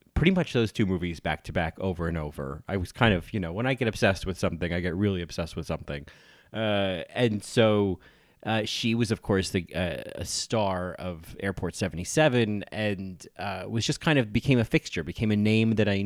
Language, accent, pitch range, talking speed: English, American, 90-120 Hz, 215 wpm